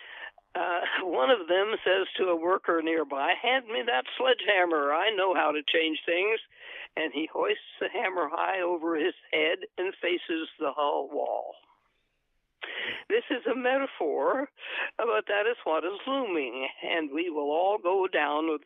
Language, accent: English, American